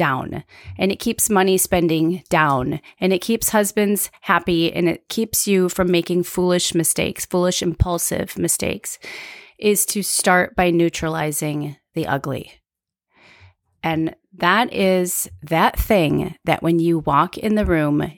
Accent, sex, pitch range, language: American, female, 160-195 Hz, English